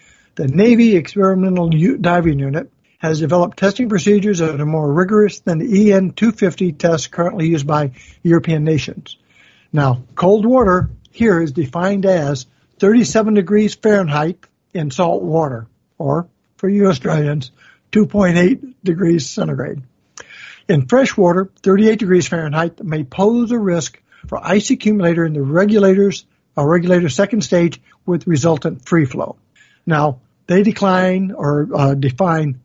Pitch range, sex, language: 155-200 Hz, male, English